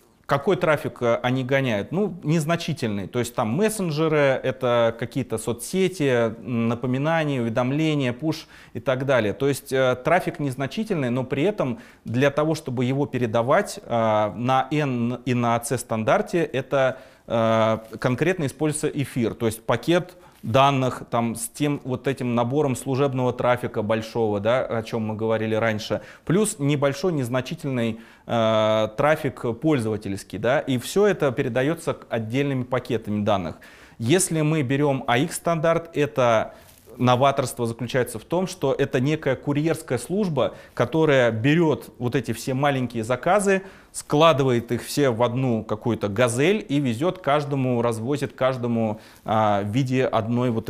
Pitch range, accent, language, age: 115-145 Hz, native, Russian, 30-49